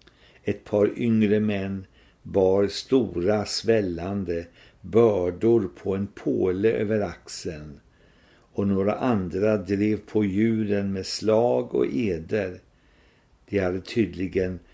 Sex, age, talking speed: male, 60-79, 105 wpm